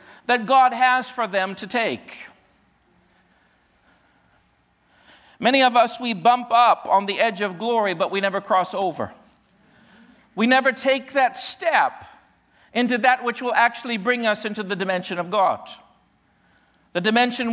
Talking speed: 145 wpm